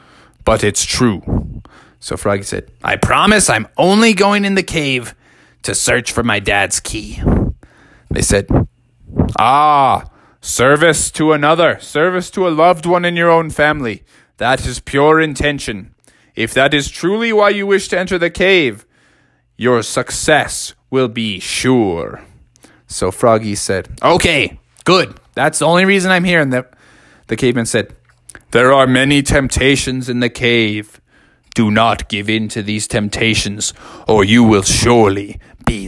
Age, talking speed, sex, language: 20-39, 150 wpm, male, English